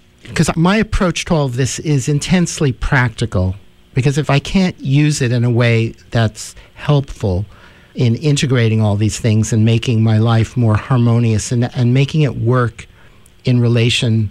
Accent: American